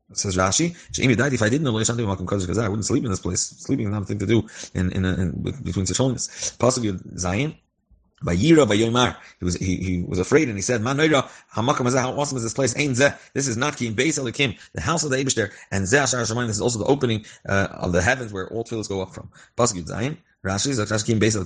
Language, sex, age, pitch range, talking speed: English, male, 30-49, 100-130 Hz, 255 wpm